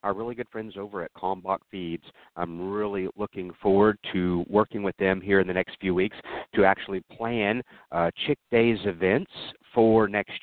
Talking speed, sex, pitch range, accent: 180 wpm, male, 90-110 Hz, American